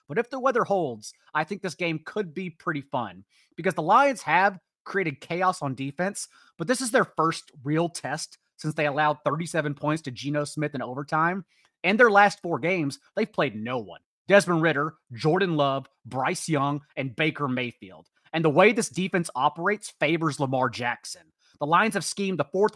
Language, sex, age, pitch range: English, male, 30-49, 150-195 Hz